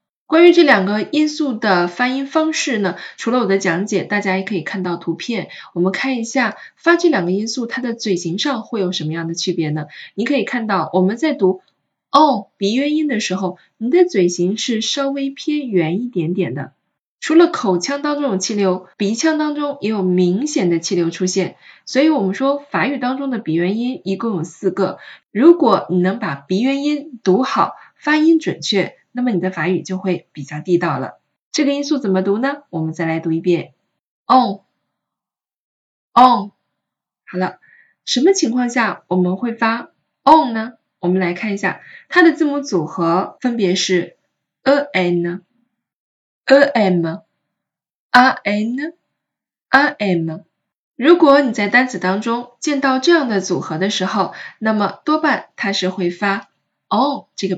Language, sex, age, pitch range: Chinese, female, 20-39, 185-275 Hz